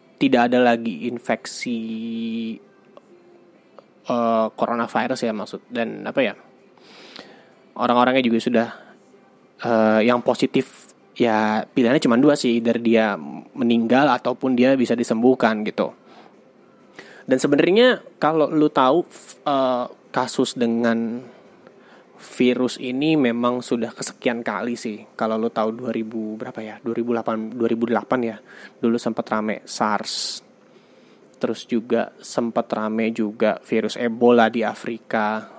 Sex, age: male, 20-39